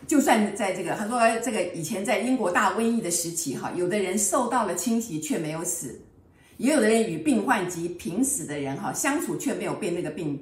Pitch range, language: 165-255 Hz, Chinese